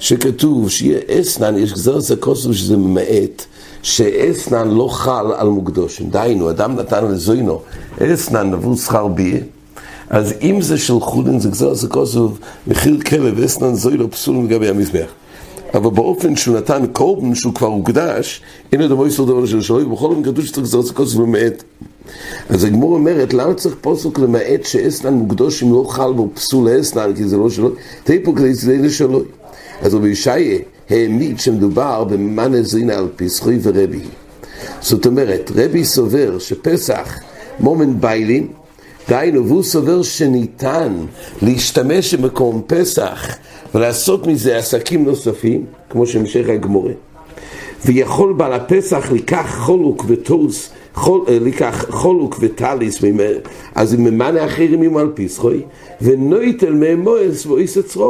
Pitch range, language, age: 110-160 Hz, English, 60-79